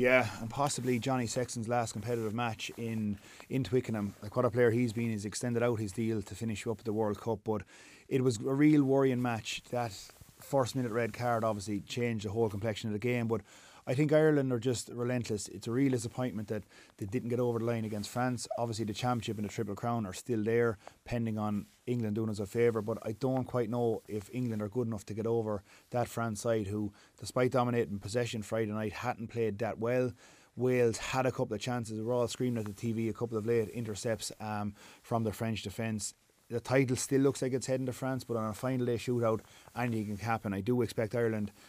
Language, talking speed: English, 225 wpm